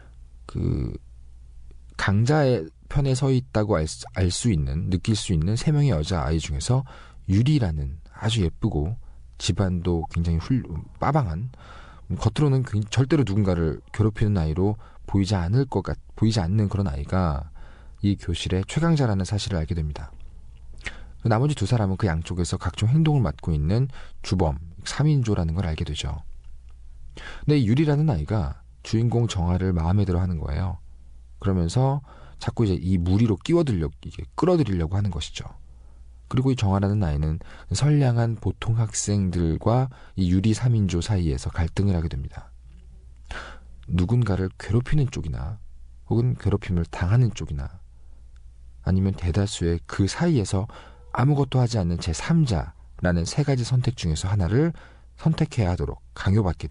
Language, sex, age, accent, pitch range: Korean, male, 40-59, native, 75-115 Hz